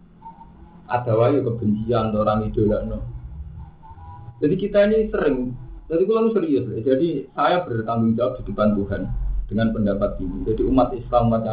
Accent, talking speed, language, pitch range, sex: native, 145 wpm, Indonesian, 110-175 Hz, male